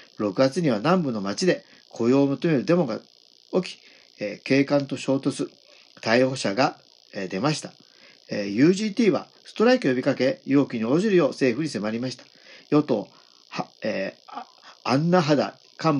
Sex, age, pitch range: male, 50-69, 135-185 Hz